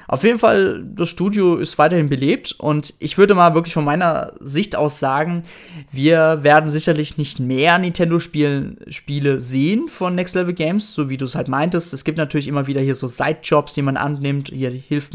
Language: German